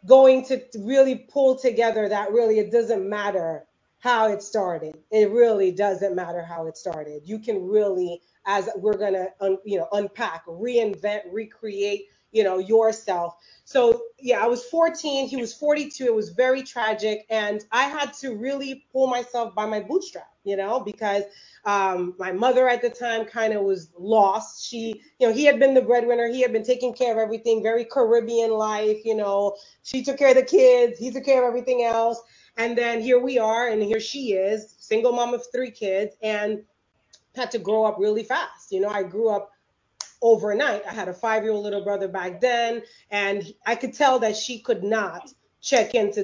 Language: English